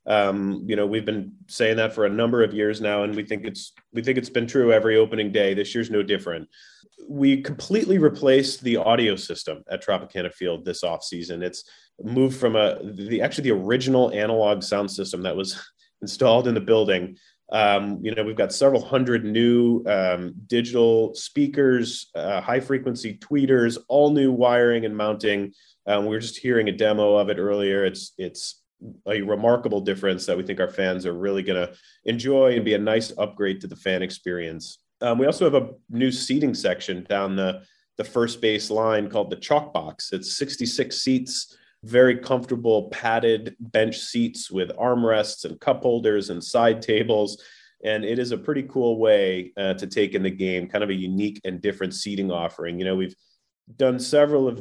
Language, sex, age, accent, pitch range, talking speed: English, male, 30-49, American, 100-125 Hz, 190 wpm